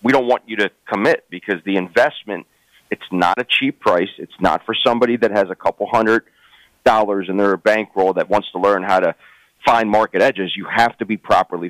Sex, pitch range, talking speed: male, 95-115 Hz, 210 wpm